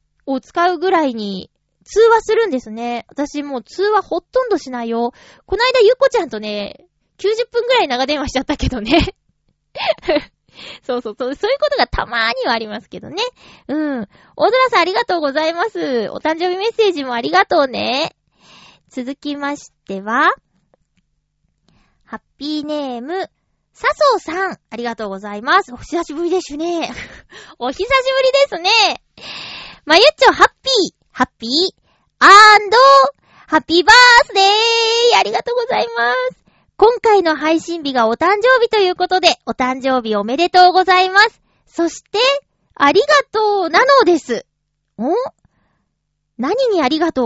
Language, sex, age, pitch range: Japanese, female, 20-39, 255-405 Hz